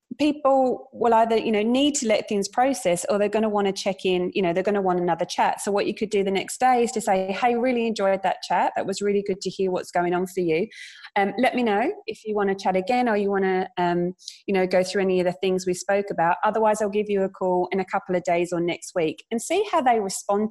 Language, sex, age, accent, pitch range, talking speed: English, female, 30-49, British, 180-220 Hz, 285 wpm